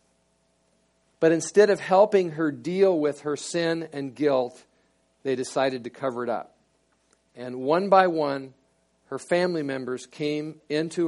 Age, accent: 50-69, American